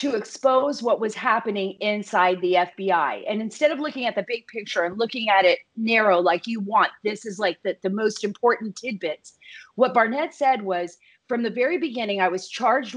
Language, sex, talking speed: English, female, 200 wpm